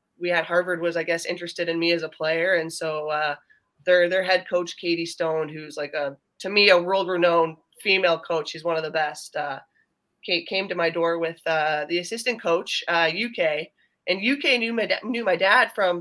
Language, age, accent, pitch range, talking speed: English, 20-39, American, 160-190 Hz, 210 wpm